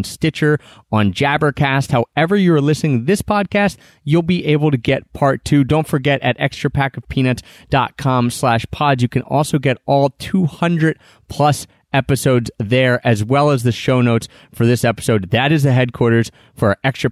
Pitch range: 120-155 Hz